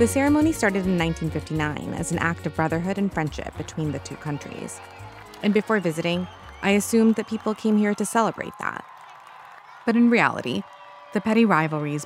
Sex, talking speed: female, 170 wpm